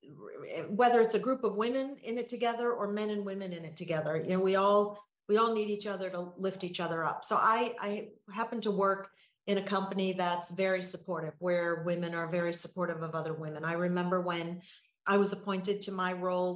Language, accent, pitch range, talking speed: English, American, 180-210 Hz, 215 wpm